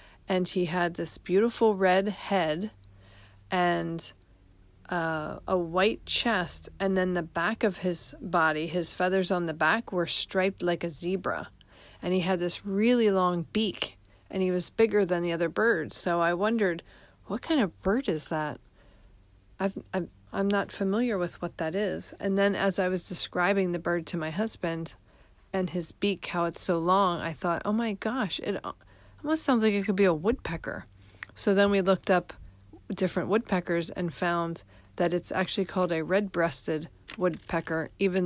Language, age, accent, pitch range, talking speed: English, 40-59, American, 155-200 Hz, 175 wpm